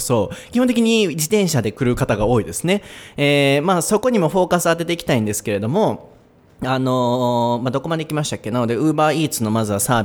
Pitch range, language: 115-170 Hz, Japanese